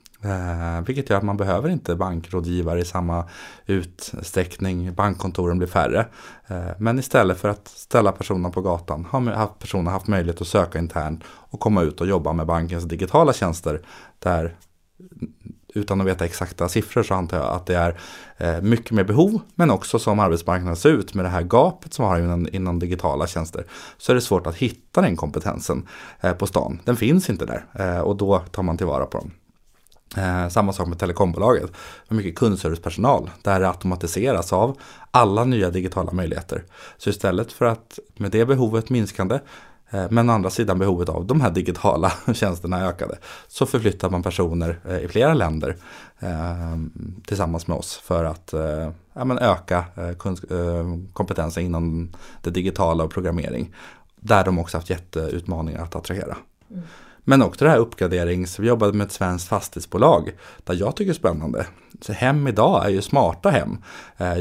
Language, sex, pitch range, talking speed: Swedish, male, 85-105 Hz, 170 wpm